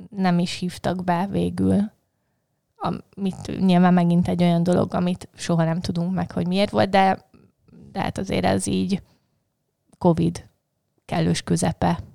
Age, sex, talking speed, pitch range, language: 20-39, female, 135 wpm, 170-200 Hz, Hungarian